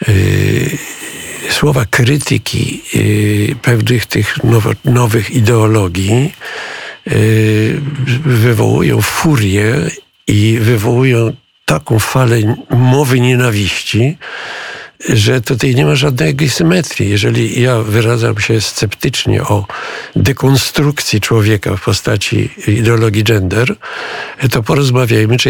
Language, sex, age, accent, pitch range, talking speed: Polish, male, 50-69, native, 110-135 Hz, 80 wpm